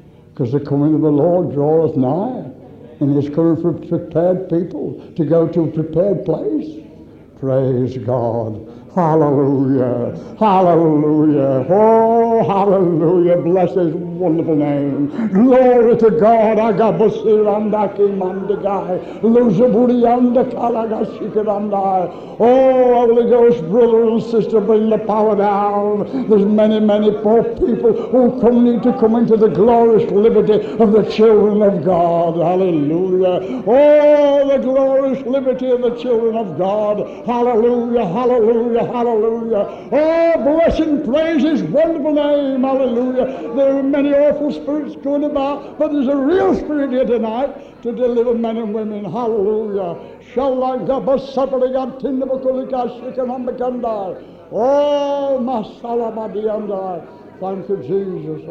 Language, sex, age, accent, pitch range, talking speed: English, male, 60-79, American, 175-245 Hz, 110 wpm